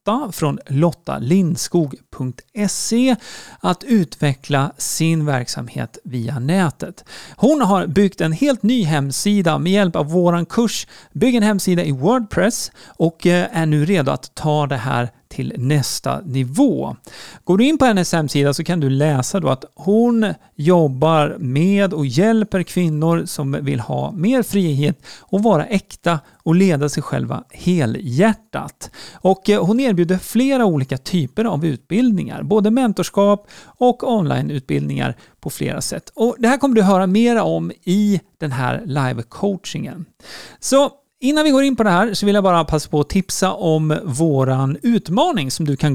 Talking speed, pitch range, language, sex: 150 wpm, 150-215 Hz, Swedish, male